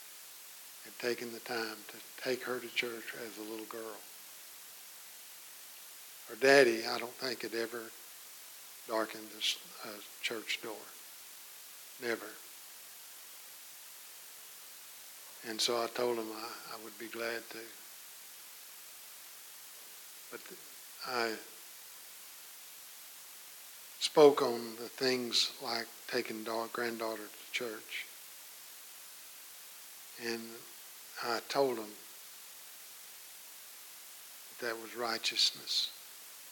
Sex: male